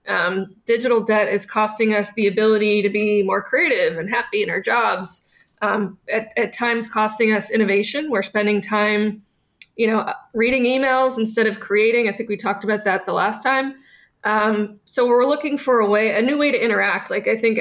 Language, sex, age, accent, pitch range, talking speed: English, female, 20-39, American, 210-255 Hz, 200 wpm